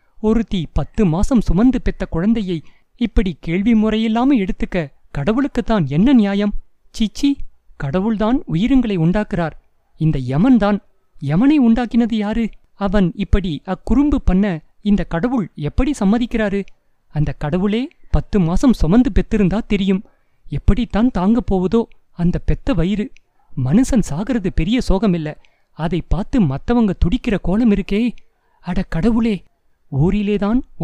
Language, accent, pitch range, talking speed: Tamil, native, 175-235 Hz, 110 wpm